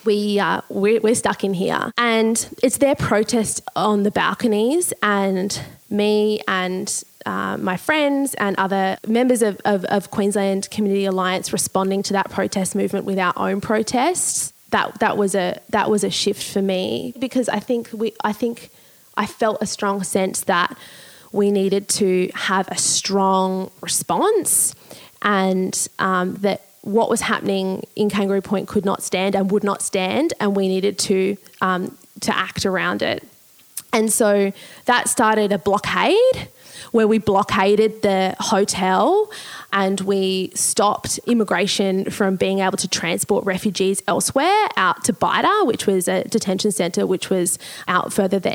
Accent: Australian